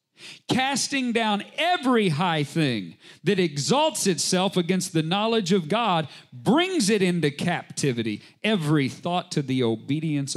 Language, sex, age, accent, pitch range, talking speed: English, male, 40-59, American, 150-220 Hz, 125 wpm